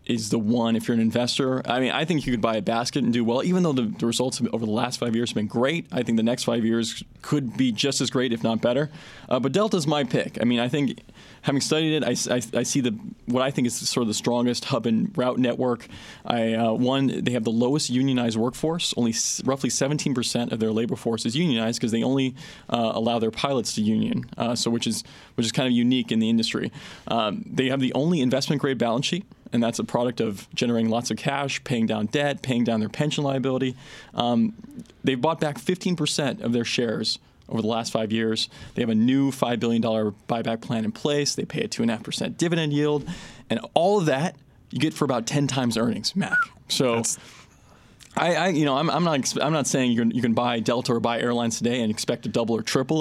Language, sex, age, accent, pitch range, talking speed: English, male, 20-39, American, 115-145 Hz, 235 wpm